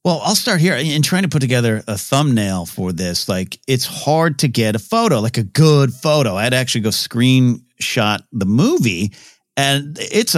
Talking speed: 185 wpm